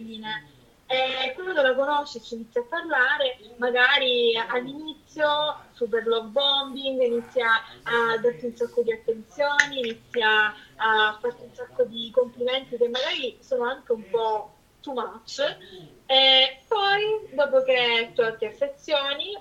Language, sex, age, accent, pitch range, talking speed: Italian, female, 20-39, native, 235-365 Hz, 125 wpm